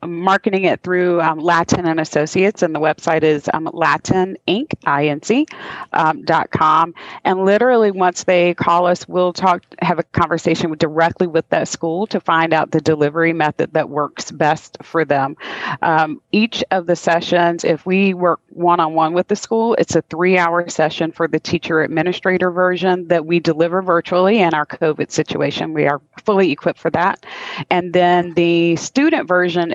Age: 40-59